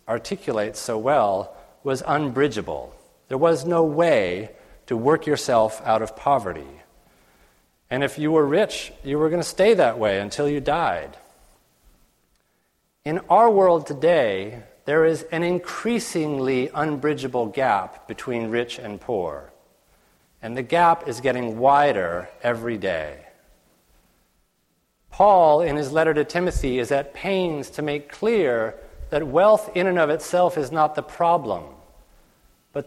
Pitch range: 130-170 Hz